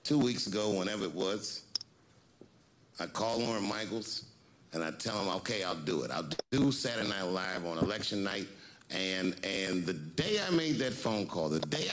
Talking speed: 185 wpm